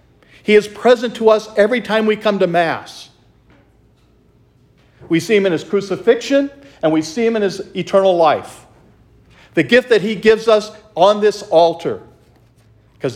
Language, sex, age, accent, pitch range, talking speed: English, male, 50-69, American, 125-195 Hz, 160 wpm